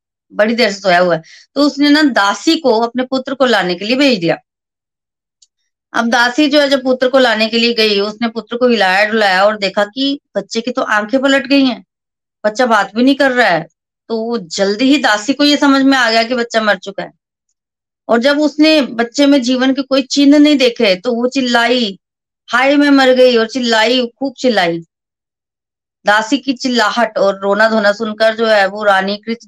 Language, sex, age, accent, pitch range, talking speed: Hindi, female, 20-39, native, 210-255 Hz, 205 wpm